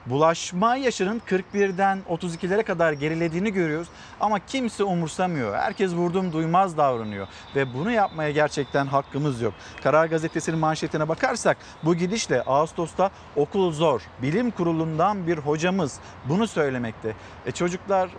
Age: 50-69